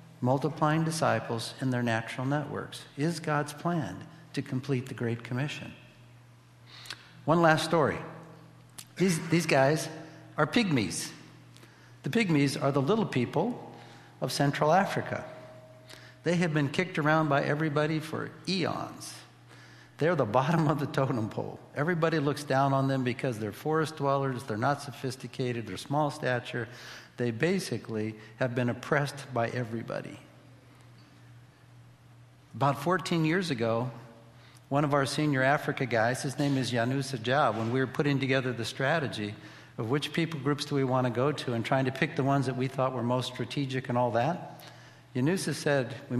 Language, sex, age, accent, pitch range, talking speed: English, male, 60-79, American, 125-150 Hz, 155 wpm